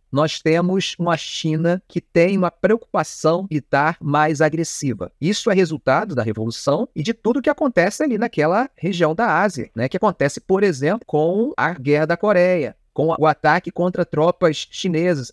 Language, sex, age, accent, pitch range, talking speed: Portuguese, male, 40-59, Brazilian, 150-195 Hz, 170 wpm